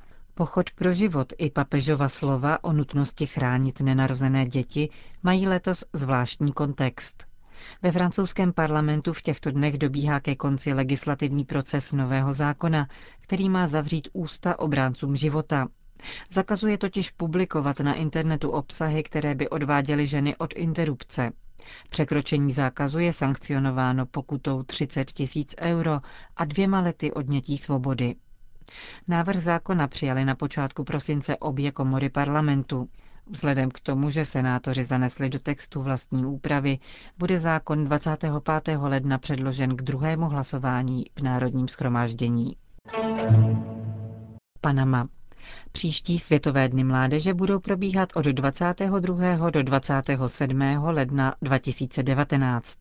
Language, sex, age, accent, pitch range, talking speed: Czech, female, 40-59, native, 135-160 Hz, 115 wpm